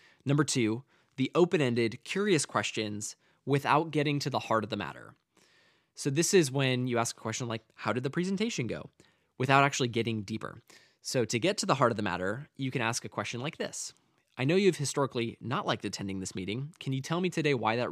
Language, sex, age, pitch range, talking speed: English, male, 20-39, 110-145 Hz, 215 wpm